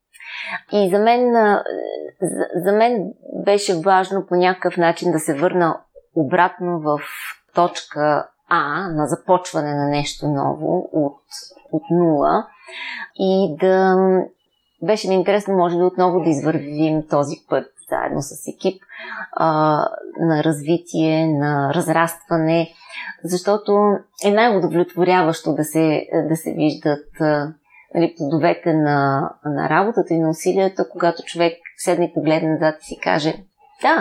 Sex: female